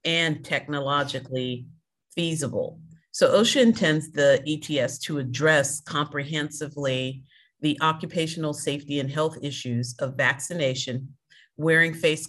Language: English